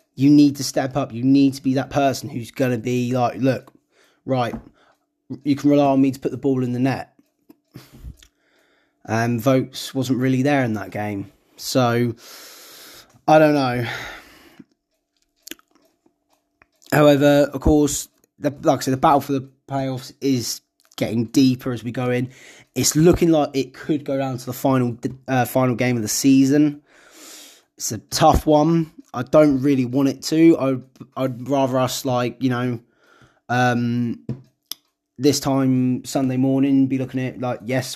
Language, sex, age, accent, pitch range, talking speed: English, male, 20-39, British, 125-145 Hz, 165 wpm